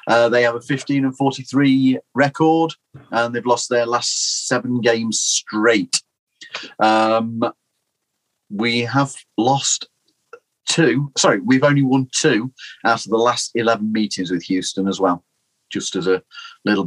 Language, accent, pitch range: English, British, 110-135 Hz